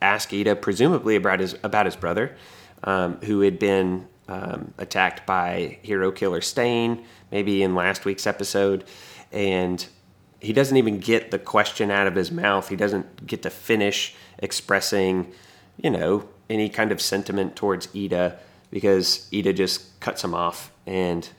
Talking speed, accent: 155 wpm, American